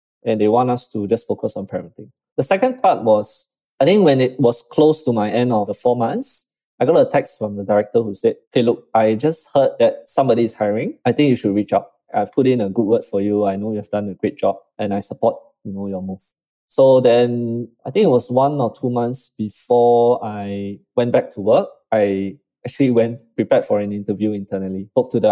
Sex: male